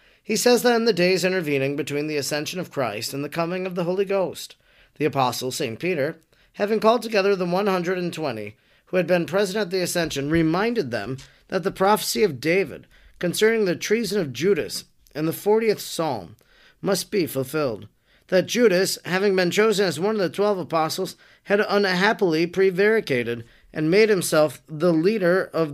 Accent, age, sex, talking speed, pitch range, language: American, 40-59, male, 175 wpm, 150-190 Hz, English